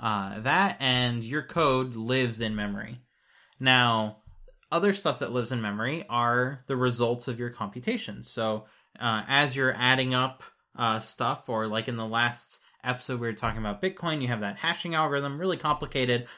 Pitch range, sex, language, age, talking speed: 115-140 Hz, male, English, 20-39, 170 wpm